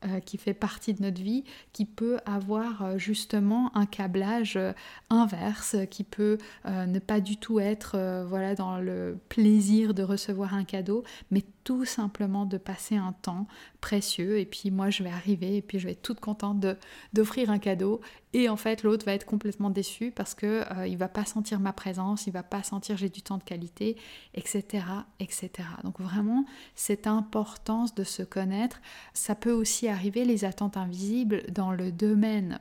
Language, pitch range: French, 195-220 Hz